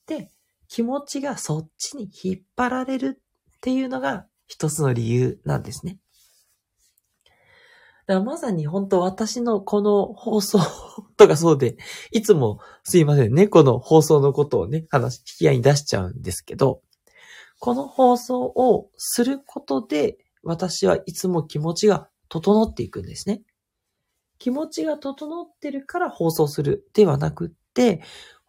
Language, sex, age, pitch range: Japanese, male, 40-59, 145-240 Hz